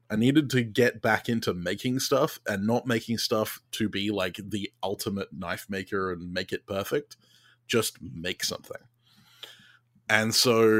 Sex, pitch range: male, 95-120 Hz